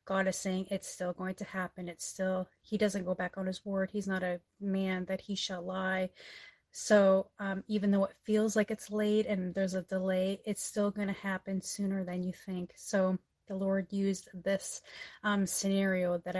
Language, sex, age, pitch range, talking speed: English, female, 30-49, 185-205 Hz, 200 wpm